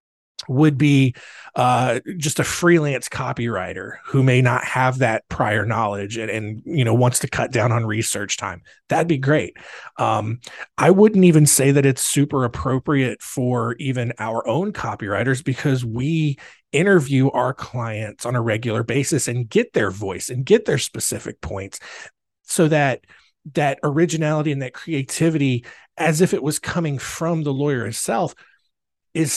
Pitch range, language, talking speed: 120-155 Hz, English, 155 wpm